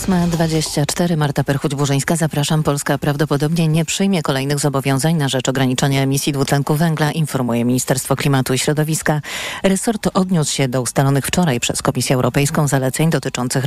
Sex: female